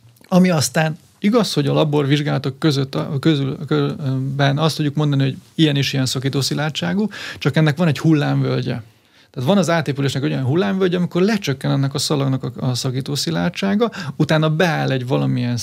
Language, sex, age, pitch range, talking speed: Hungarian, male, 30-49, 130-160 Hz, 150 wpm